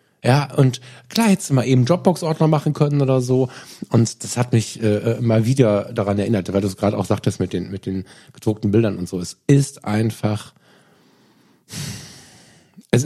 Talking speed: 180 wpm